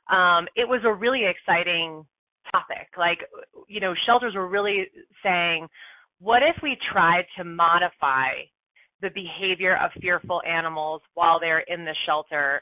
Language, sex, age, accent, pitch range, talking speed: English, female, 30-49, American, 170-210 Hz, 145 wpm